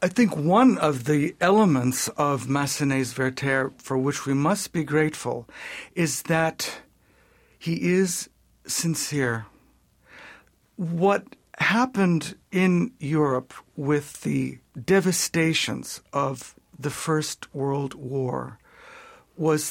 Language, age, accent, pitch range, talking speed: English, 60-79, American, 135-180 Hz, 100 wpm